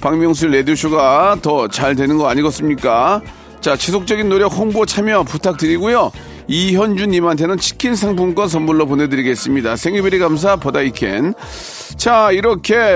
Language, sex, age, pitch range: Korean, male, 40-59, 150-200 Hz